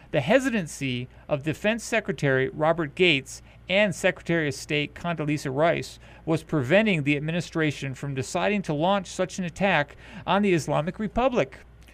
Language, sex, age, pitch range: English, male, 40-59, 130-190 Hz